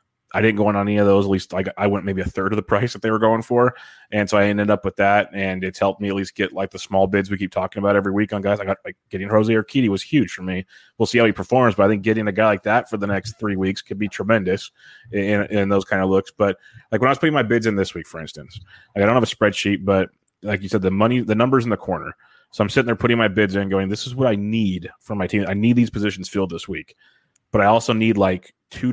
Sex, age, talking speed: male, 30-49, 305 wpm